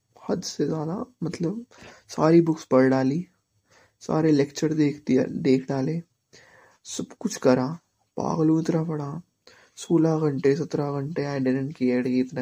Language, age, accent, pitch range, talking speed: Hindi, 20-39, native, 125-160 Hz, 130 wpm